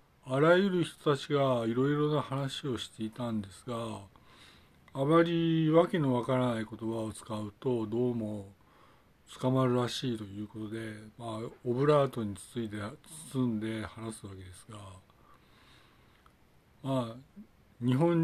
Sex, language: male, Japanese